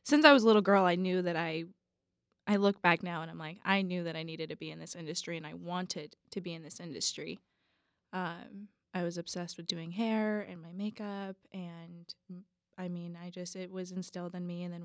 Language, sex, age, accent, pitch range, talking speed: English, female, 20-39, American, 175-205 Hz, 230 wpm